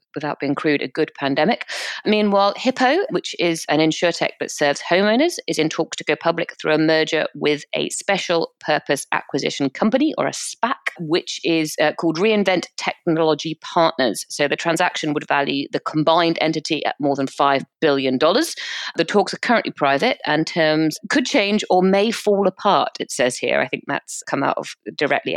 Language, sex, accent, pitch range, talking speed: English, female, British, 140-185 Hz, 180 wpm